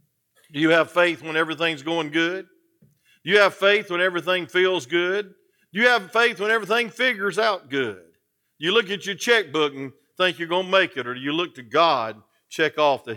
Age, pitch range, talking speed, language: 50-69, 145-215 Hz, 215 wpm, English